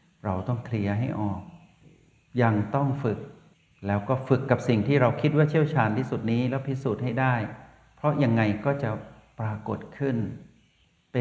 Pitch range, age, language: 105-130 Hz, 60-79, Thai